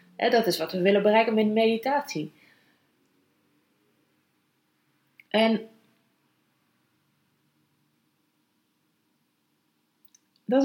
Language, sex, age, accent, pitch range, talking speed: Dutch, female, 30-49, Dutch, 175-225 Hz, 70 wpm